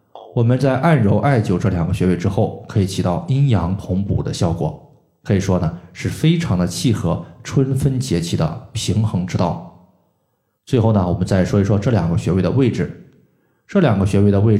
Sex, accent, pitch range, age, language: male, native, 95-125 Hz, 20-39, Chinese